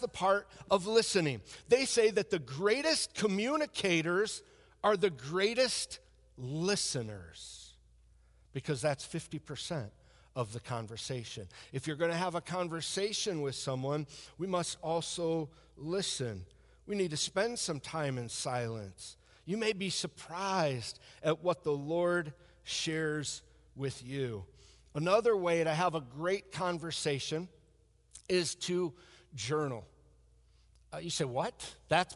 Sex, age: male, 50-69